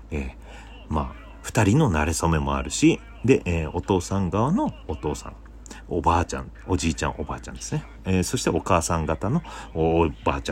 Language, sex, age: Japanese, male, 40-59